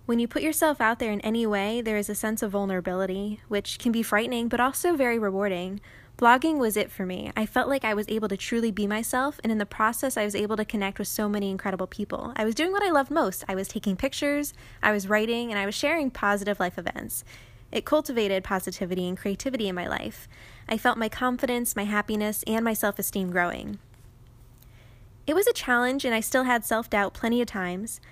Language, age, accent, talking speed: English, 10-29, American, 220 wpm